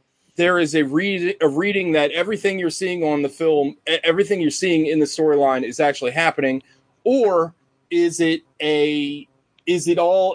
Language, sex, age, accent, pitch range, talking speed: English, male, 30-49, American, 135-165 Hz, 170 wpm